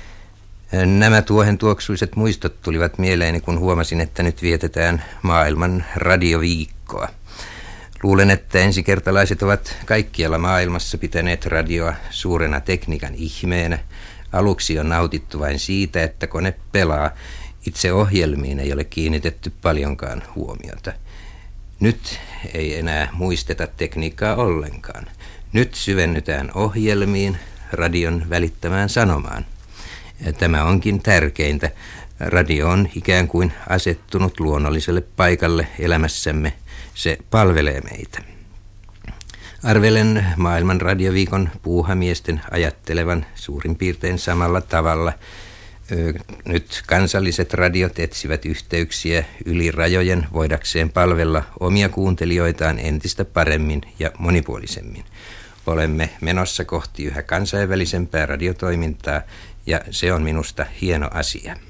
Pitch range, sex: 80-100 Hz, male